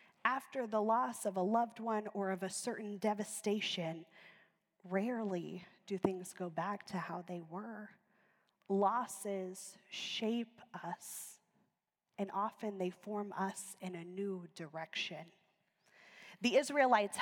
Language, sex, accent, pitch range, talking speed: English, female, American, 185-215 Hz, 120 wpm